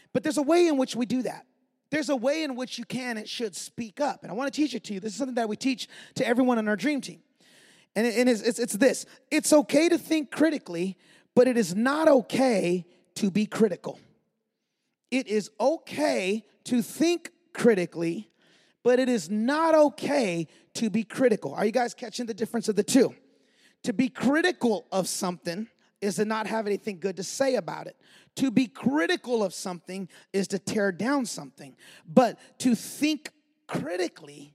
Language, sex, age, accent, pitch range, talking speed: English, male, 30-49, American, 210-280 Hz, 195 wpm